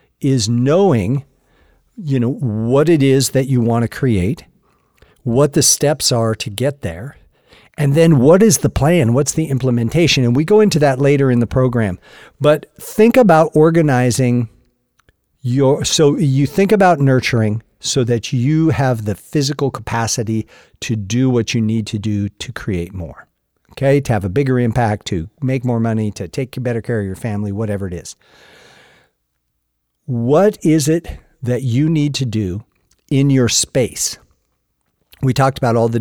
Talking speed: 165 wpm